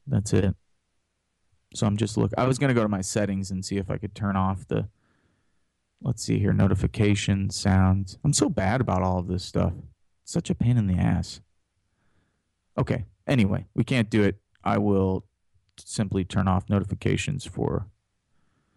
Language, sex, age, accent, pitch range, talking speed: English, male, 30-49, American, 95-125 Hz, 175 wpm